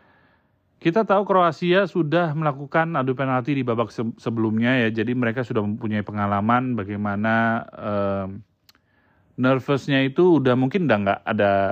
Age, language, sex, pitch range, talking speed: 30-49, Indonesian, male, 100-130 Hz, 130 wpm